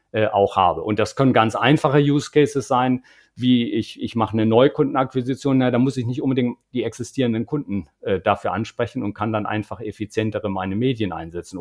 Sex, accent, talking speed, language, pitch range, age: male, German, 180 wpm, German, 115-140 Hz, 50-69